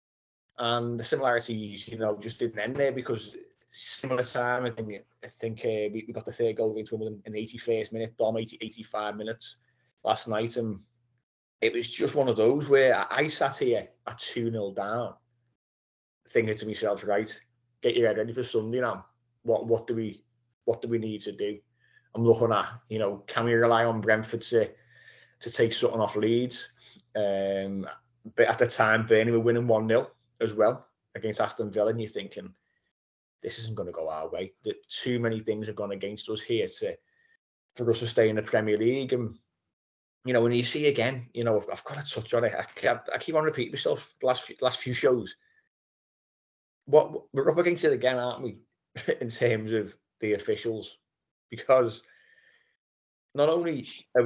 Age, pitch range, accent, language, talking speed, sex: 20-39, 110-125 Hz, British, English, 190 wpm, male